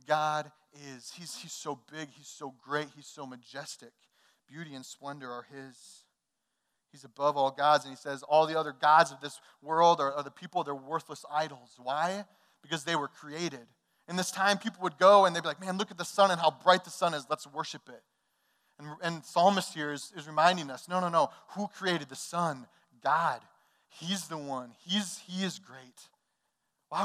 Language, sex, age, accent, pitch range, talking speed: English, male, 30-49, American, 135-175 Hz, 200 wpm